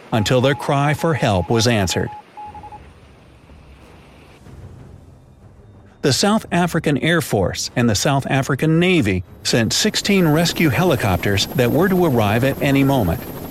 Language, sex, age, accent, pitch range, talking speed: English, male, 50-69, American, 110-160 Hz, 125 wpm